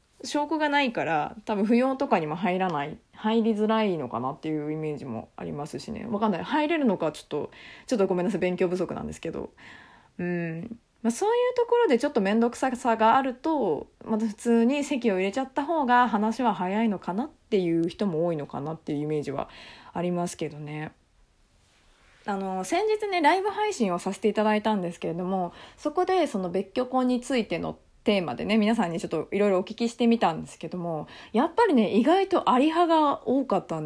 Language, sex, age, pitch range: Japanese, female, 20-39, 175-265 Hz